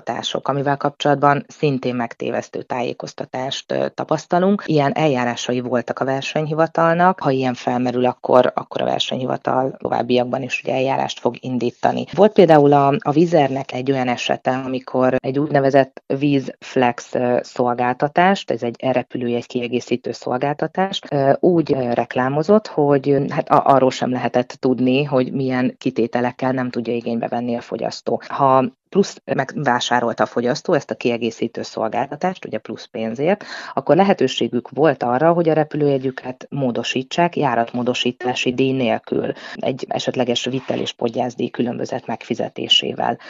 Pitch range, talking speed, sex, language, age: 125-145 Hz, 125 wpm, female, Hungarian, 30-49